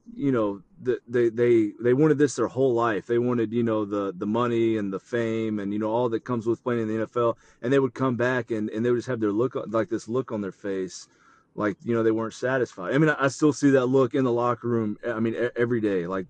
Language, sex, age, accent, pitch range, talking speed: English, male, 30-49, American, 115-145 Hz, 265 wpm